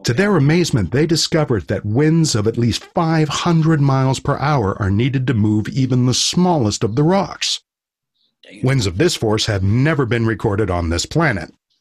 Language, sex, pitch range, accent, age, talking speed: English, male, 110-160 Hz, American, 50-69, 180 wpm